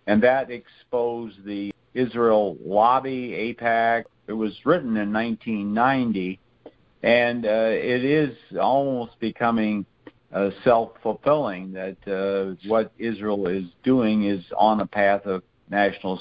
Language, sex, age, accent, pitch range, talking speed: English, male, 50-69, American, 100-120 Hz, 120 wpm